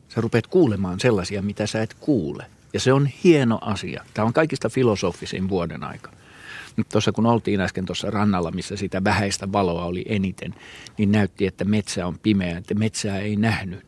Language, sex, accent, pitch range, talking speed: Finnish, male, native, 100-125 Hz, 180 wpm